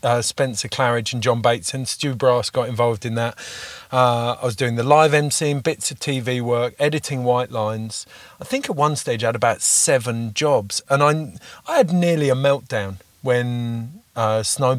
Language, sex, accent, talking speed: English, male, British, 195 wpm